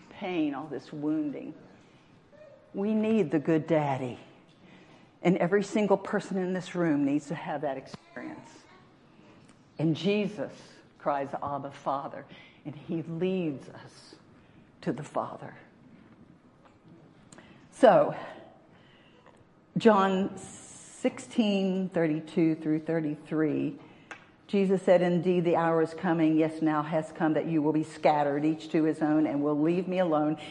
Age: 60-79